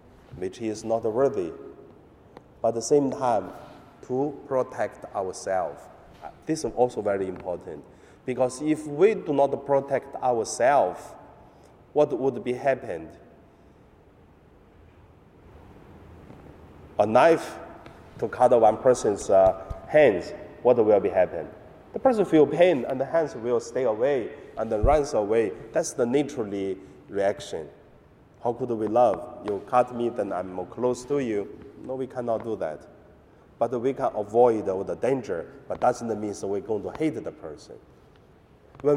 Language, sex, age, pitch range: Chinese, male, 30-49, 110-140 Hz